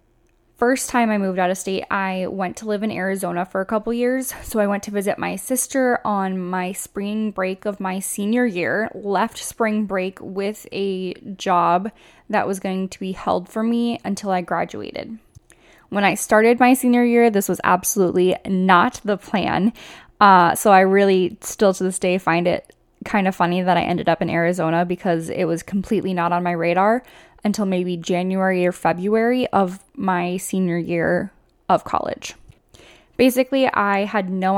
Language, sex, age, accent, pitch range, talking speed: English, female, 10-29, American, 180-215 Hz, 180 wpm